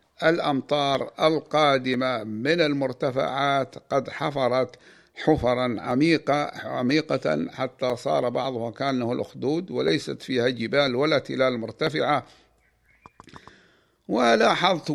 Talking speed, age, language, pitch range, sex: 85 wpm, 60-79, Arabic, 120-145 Hz, male